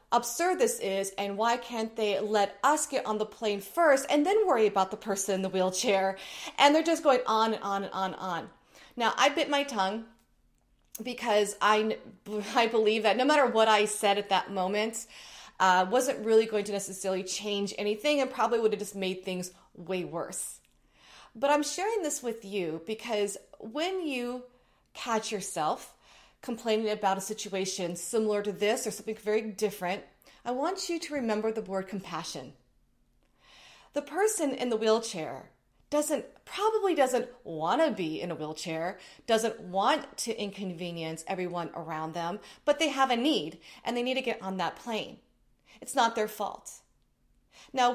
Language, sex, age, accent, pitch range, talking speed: English, female, 30-49, American, 195-260 Hz, 170 wpm